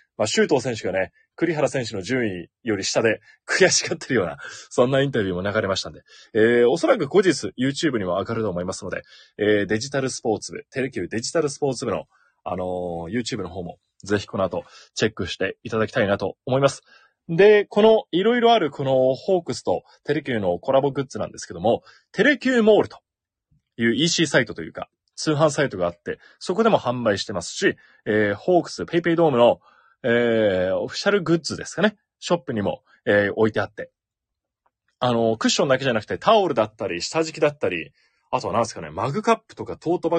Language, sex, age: Japanese, male, 20-39